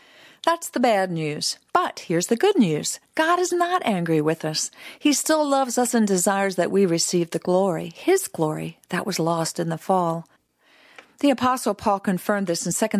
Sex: female